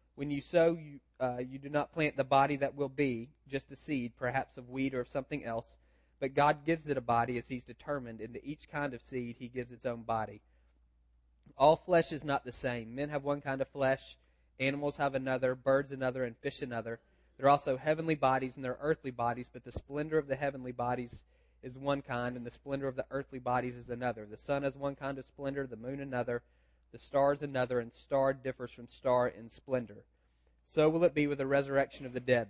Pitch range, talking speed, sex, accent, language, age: 120-140 Hz, 225 wpm, male, American, English, 30-49